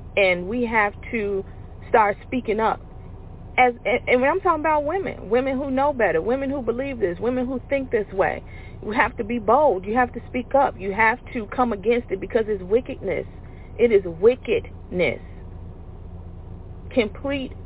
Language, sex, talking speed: English, female, 165 wpm